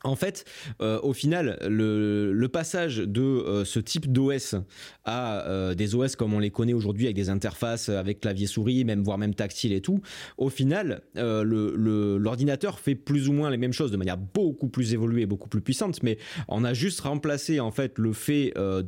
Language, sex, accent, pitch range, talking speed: French, male, French, 110-145 Hz, 205 wpm